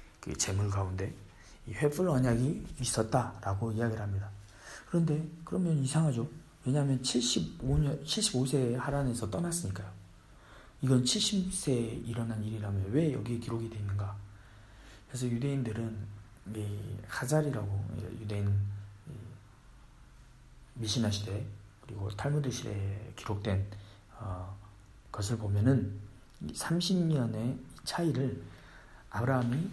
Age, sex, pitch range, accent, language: 40-59, male, 100-135 Hz, native, Korean